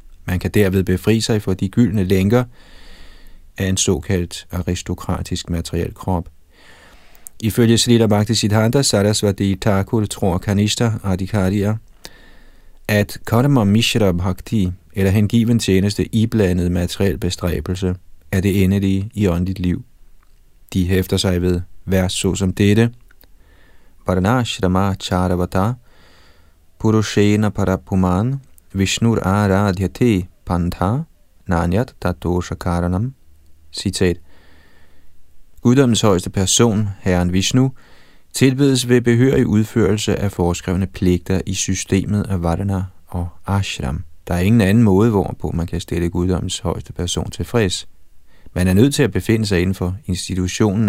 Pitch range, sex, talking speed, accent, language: 90-105 Hz, male, 115 wpm, native, Danish